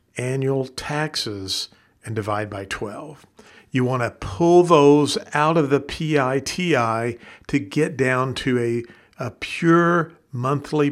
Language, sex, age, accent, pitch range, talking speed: English, male, 50-69, American, 120-155 Hz, 125 wpm